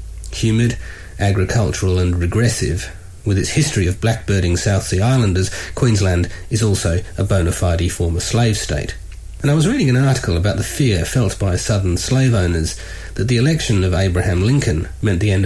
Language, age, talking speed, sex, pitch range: English, 40-59, 170 wpm, male, 90-115 Hz